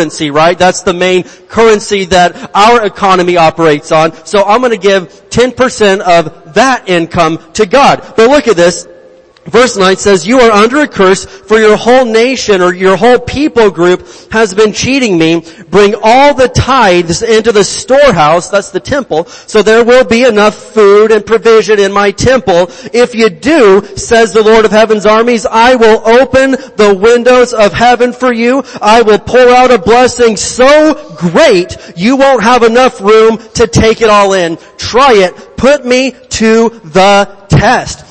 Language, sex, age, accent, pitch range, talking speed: English, male, 40-59, American, 195-245 Hz, 175 wpm